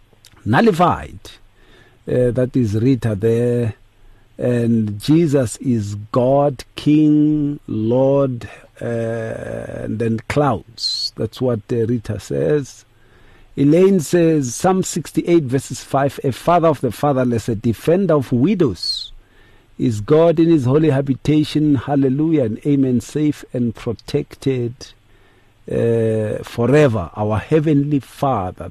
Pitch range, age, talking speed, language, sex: 115-145 Hz, 50-69, 110 wpm, English, male